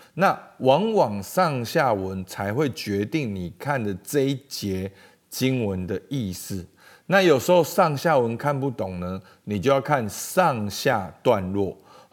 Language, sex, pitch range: Chinese, male, 100-155 Hz